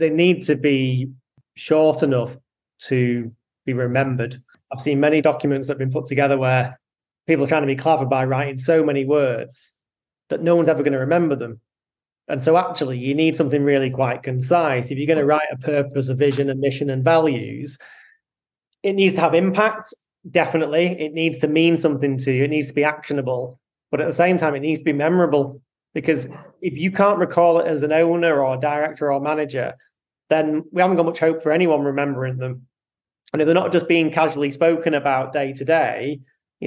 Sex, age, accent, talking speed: male, 20-39, British, 205 wpm